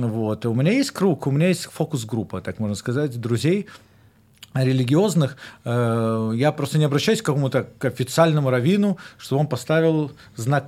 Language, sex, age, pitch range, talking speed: English, male, 40-59, 120-160 Hz, 145 wpm